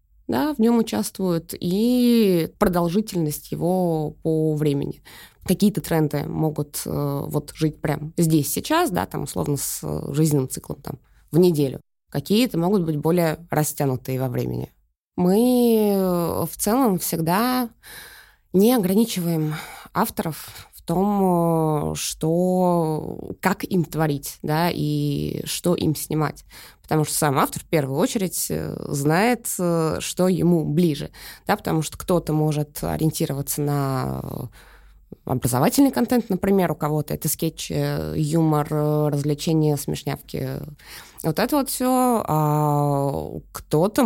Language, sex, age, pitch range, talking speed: Russian, female, 20-39, 150-185 Hz, 115 wpm